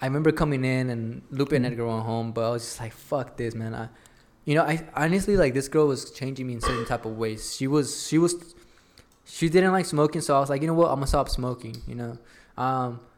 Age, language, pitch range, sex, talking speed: 20-39, English, 120-155 Hz, male, 255 wpm